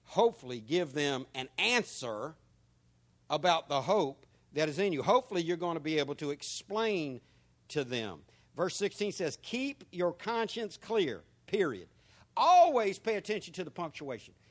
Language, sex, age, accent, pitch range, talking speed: English, male, 60-79, American, 160-240 Hz, 150 wpm